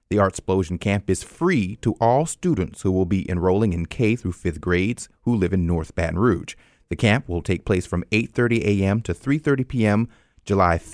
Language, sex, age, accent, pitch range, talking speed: English, male, 30-49, American, 95-125 Hz, 190 wpm